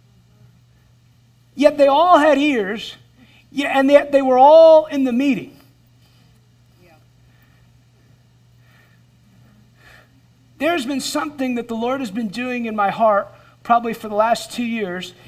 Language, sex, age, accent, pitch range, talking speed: English, male, 40-59, American, 200-280 Hz, 120 wpm